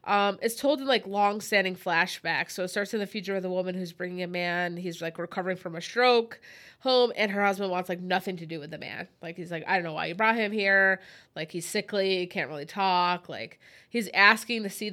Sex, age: female, 20-39